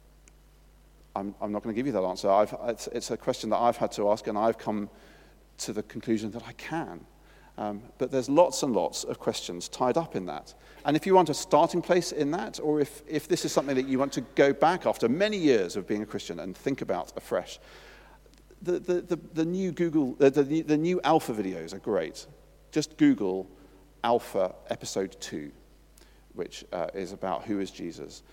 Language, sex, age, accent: English, male, 40-59, British